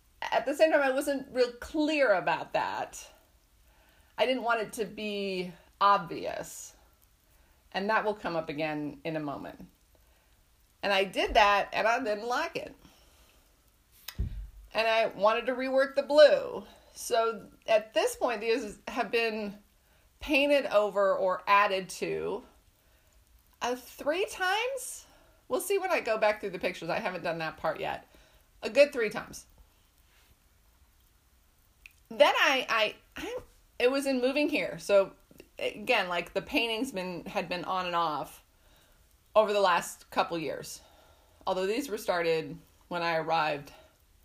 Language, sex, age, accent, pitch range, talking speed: English, female, 30-49, American, 160-255 Hz, 145 wpm